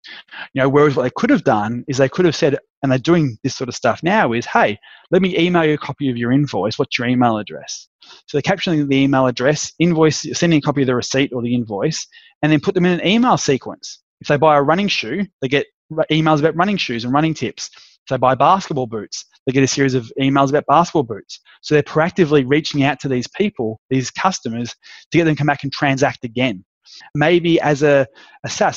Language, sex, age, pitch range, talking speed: English, male, 20-39, 130-160 Hz, 235 wpm